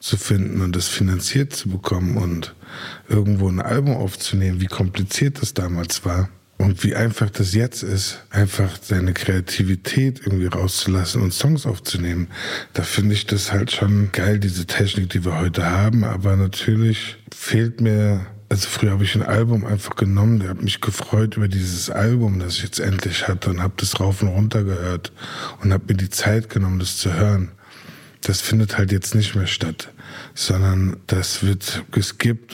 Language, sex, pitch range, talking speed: German, male, 95-110 Hz, 175 wpm